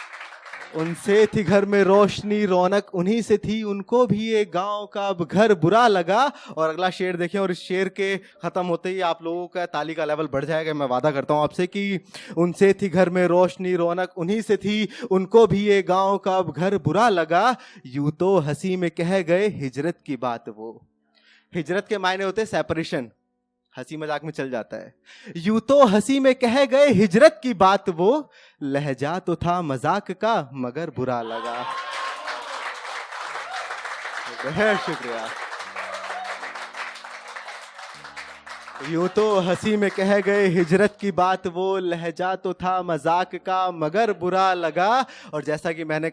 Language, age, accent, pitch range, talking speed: Hindi, 20-39, native, 160-200 Hz, 160 wpm